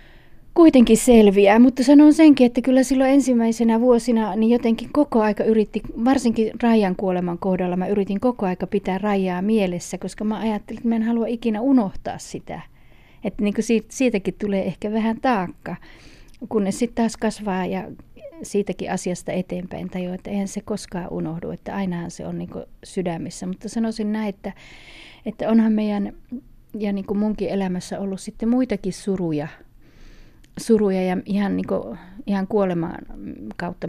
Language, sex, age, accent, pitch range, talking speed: Finnish, female, 30-49, native, 185-220 Hz, 160 wpm